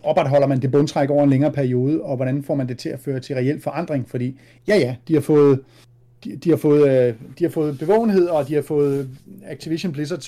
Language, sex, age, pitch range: Danish, male, 30-49, 130-160 Hz